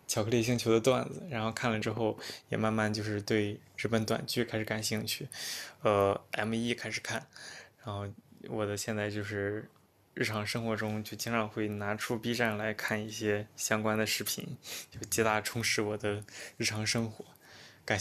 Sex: male